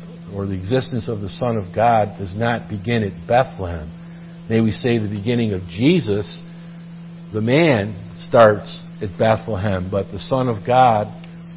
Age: 50-69